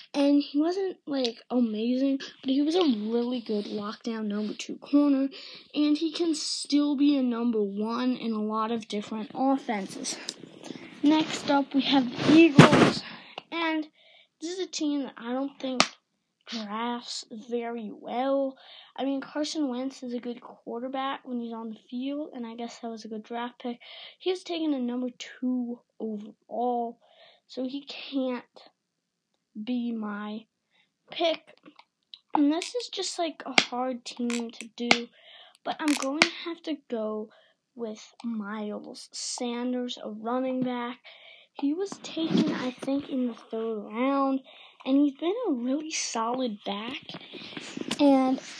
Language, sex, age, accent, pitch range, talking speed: English, female, 20-39, American, 235-295 Hz, 150 wpm